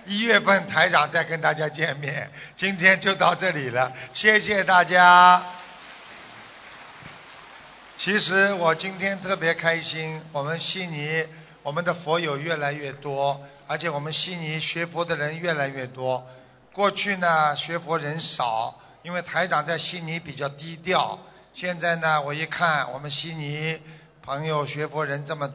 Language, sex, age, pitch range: Chinese, male, 50-69, 150-180 Hz